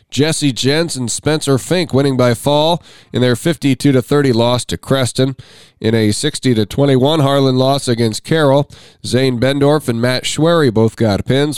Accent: American